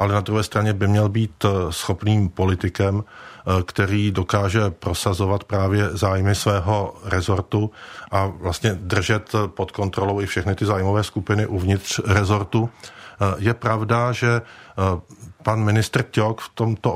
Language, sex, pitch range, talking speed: Czech, male, 100-110 Hz, 125 wpm